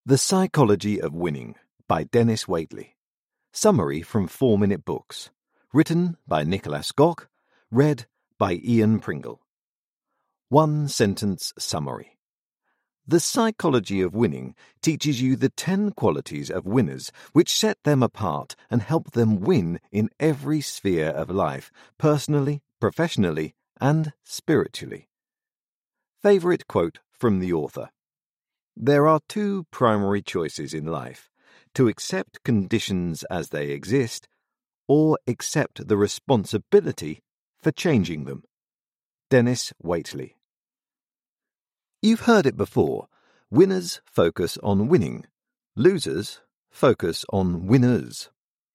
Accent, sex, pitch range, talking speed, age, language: British, male, 100-155 Hz, 110 wpm, 50-69, English